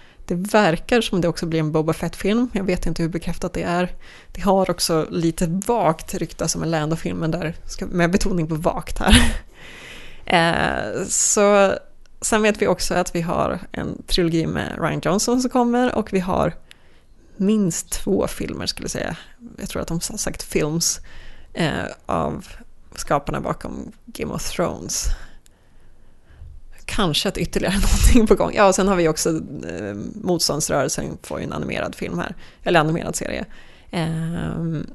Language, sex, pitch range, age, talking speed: Swedish, female, 165-205 Hz, 20-39, 160 wpm